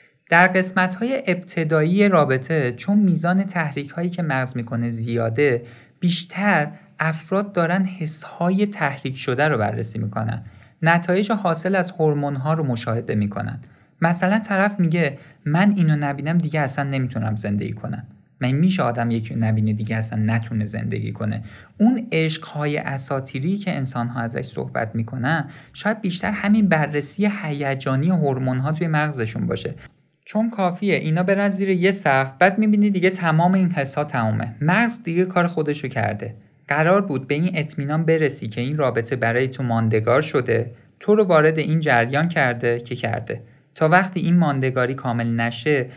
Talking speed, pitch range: 150 wpm, 120-175 Hz